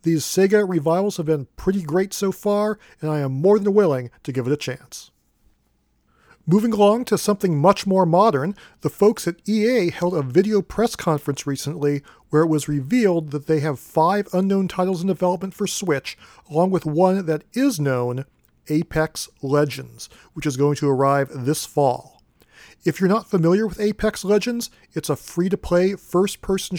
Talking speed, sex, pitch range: 170 wpm, male, 150-195 Hz